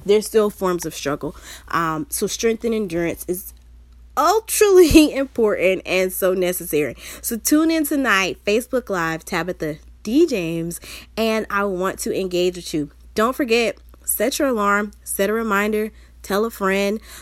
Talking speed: 150 wpm